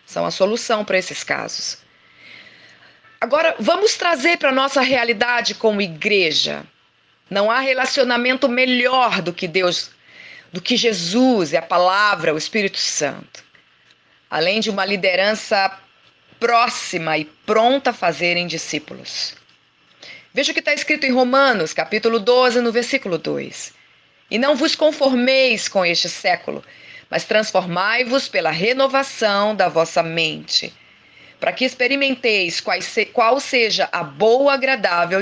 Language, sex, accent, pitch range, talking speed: Portuguese, female, Brazilian, 190-260 Hz, 125 wpm